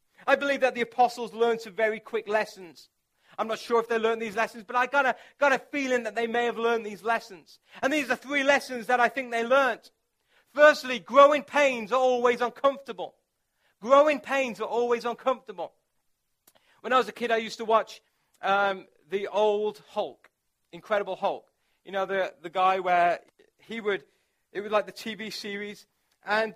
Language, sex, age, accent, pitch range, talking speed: English, male, 40-59, British, 215-255 Hz, 190 wpm